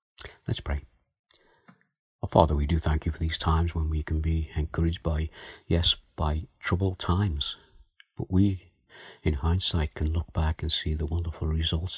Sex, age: male, 50-69